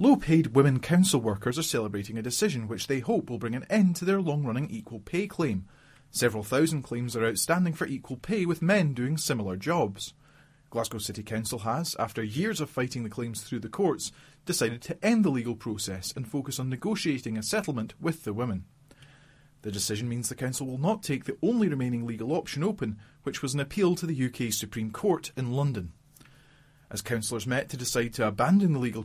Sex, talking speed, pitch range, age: male, 200 wpm, 115-155 Hz, 30-49